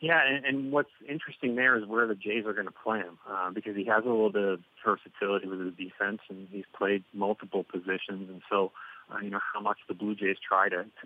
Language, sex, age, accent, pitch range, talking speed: English, male, 30-49, American, 100-105 Hz, 245 wpm